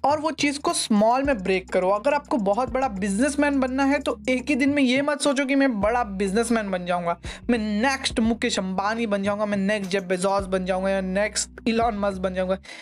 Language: Hindi